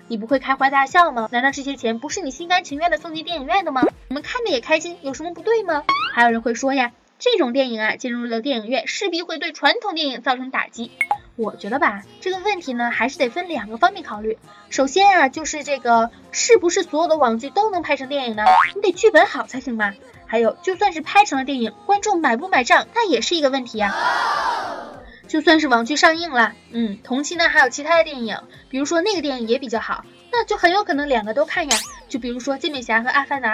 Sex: female